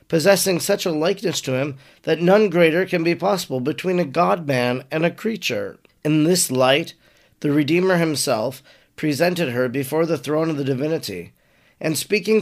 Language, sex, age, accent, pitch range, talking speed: English, male, 40-59, American, 140-175 Hz, 165 wpm